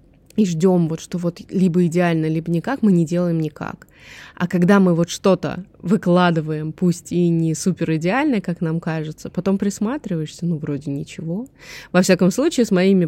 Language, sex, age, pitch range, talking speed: Russian, female, 20-39, 160-190 Hz, 165 wpm